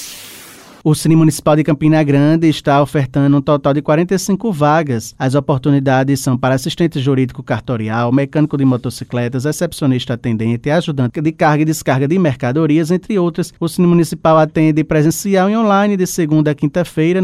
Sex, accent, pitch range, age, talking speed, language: male, Brazilian, 140-165 Hz, 20-39, 155 wpm, Portuguese